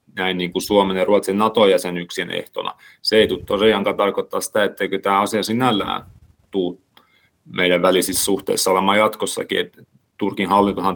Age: 30-49